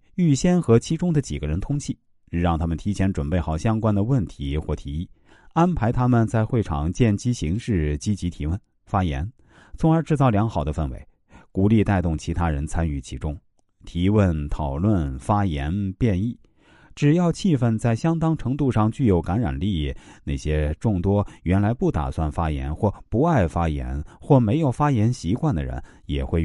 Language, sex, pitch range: Chinese, male, 80-115 Hz